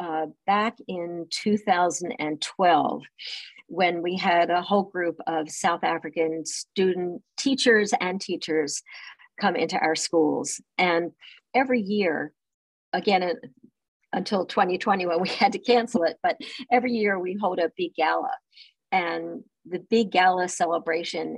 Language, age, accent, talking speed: English, 50-69, American, 130 wpm